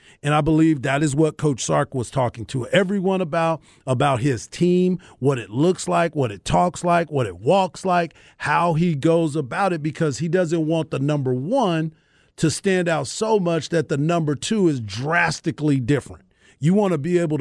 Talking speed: 195 wpm